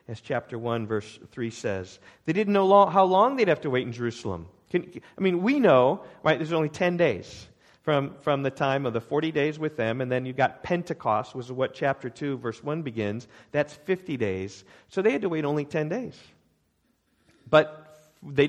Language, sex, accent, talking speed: English, male, American, 210 wpm